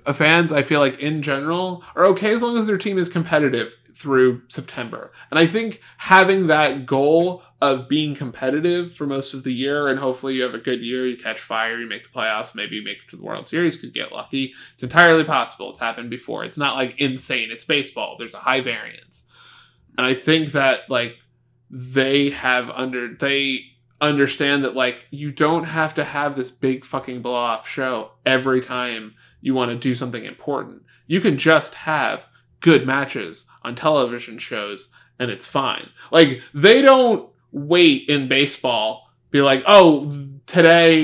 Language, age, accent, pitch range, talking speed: English, 20-39, American, 125-150 Hz, 185 wpm